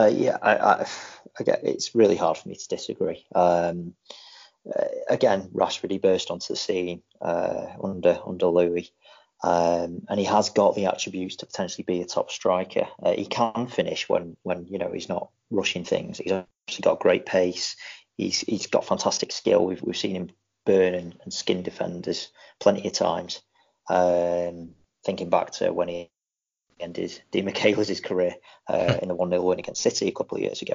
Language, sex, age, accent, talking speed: English, male, 30-49, British, 185 wpm